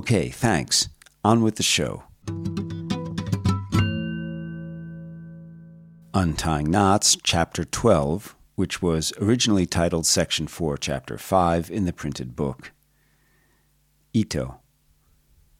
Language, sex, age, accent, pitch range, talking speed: English, male, 50-69, American, 75-100 Hz, 90 wpm